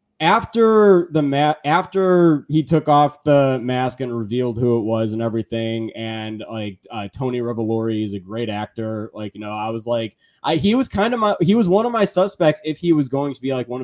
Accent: American